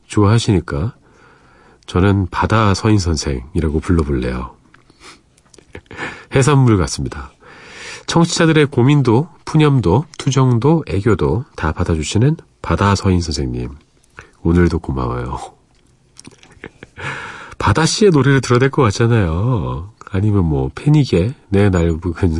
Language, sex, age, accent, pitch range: Korean, male, 40-59, native, 85-135 Hz